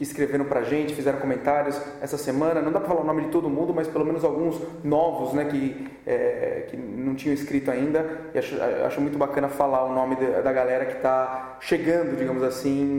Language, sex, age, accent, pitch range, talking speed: Portuguese, male, 30-49, Brazilian, 135-160 Hz, 205 wpm